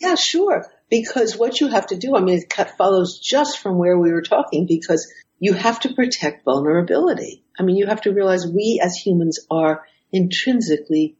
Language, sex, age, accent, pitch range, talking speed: English, female, 60-79, American, 150-200 Hz, 190 wpm